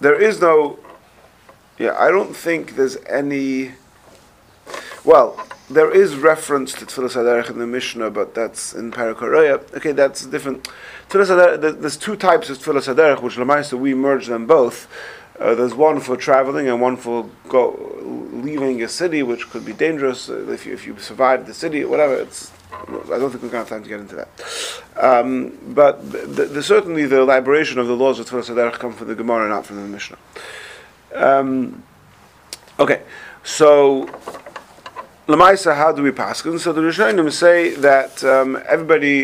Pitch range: 130-175 Hz